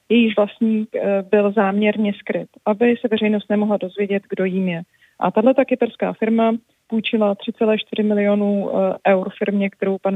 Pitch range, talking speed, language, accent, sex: 190-220 Hz, 150 wpm, Czech, native, female